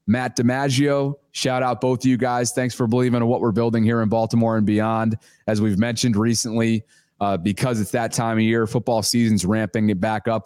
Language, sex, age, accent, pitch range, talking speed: English, male, 20-39, American, 105-125 Hz, 210 wpm